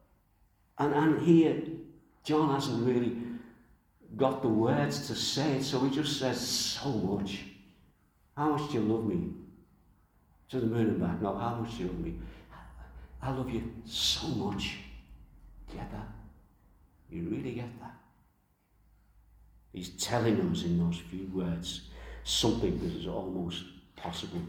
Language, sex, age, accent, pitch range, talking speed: English, male, 60-79, British, 85-120 Hz, 145 wpm